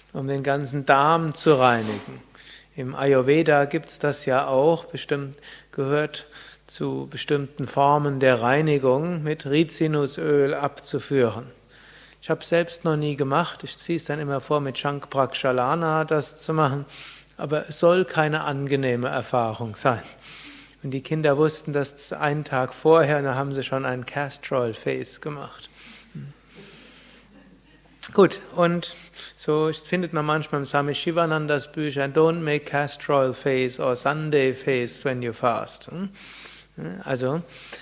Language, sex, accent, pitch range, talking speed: German, male, German, 135-165 Hz, 135 wpm